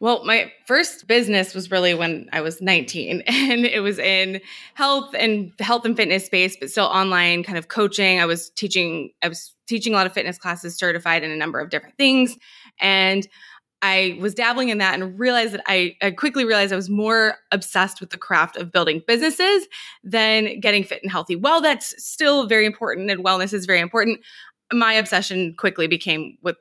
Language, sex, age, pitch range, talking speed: English, female, 20-39, 180-235 Hz, 195 wpm